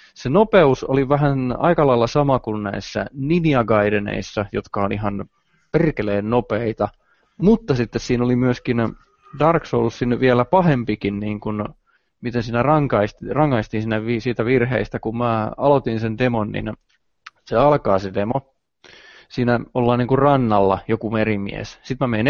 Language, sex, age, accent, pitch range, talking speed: Finnish, male, 20-39, native, 110-140 Hz, 135 wpm